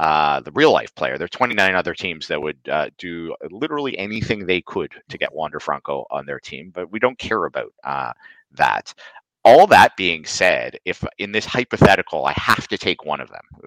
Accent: American